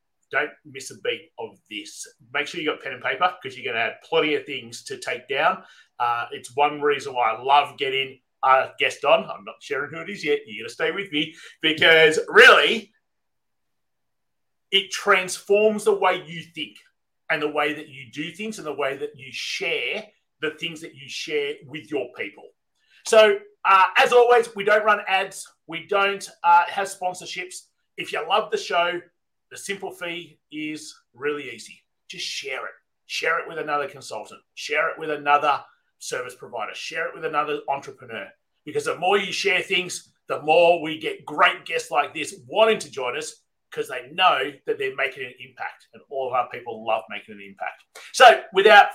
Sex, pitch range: male, 155-240 Hz